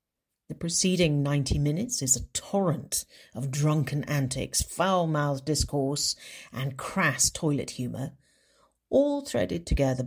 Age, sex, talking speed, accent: 50-69, female, 115 wpm, British